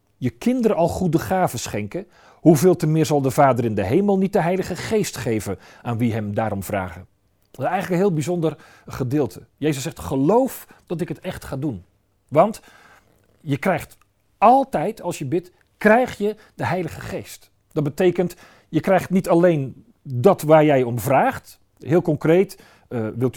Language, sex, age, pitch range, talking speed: Dutch, male, 40-59, 120-185 Hz, 170 wpm